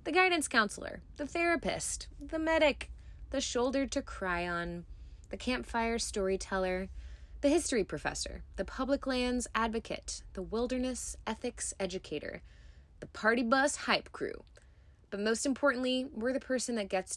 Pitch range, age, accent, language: 190-255 Hz, 20-39, American, English